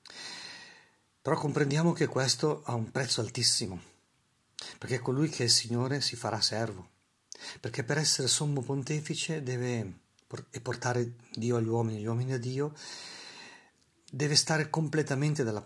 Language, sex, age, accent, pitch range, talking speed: Italian, male, 50-69, native, 110-135 Hz, 140 wpm